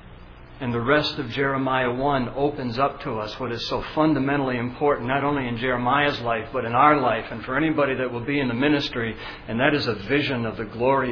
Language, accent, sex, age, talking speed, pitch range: English, American, male, 60-79, 220 wpm, 115-145 Hz